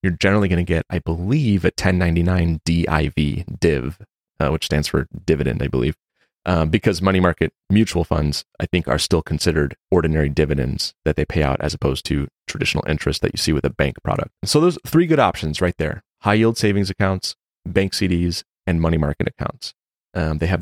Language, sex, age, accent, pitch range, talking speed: English, male, 30-49, American, 80-95 Hz, 195 wpm